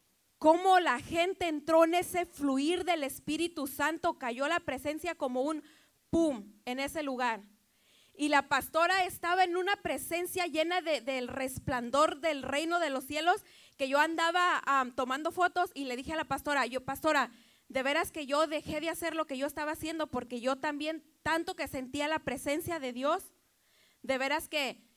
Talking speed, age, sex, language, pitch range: 175 wpm, 30-49, female, Spanish, 260-325 Hz